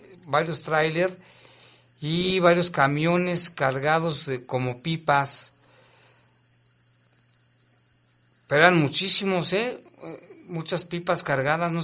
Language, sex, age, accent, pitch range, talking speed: Spanish, male, 50-69, Mexican, 125-155 Hz, 80 wpm